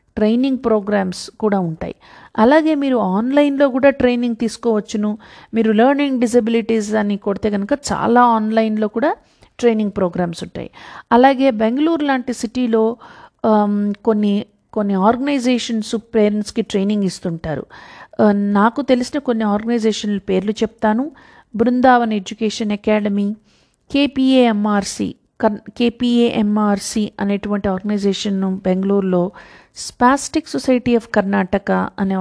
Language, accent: Telugu, native